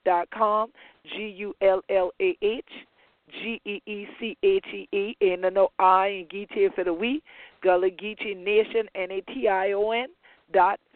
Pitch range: 170-230 Hz